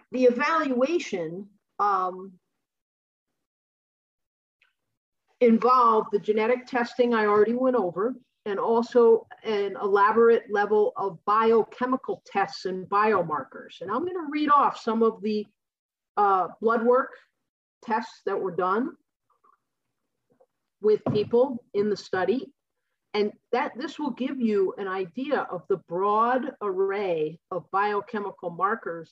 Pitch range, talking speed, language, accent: 190-250 Hz, 115 wpm, English, American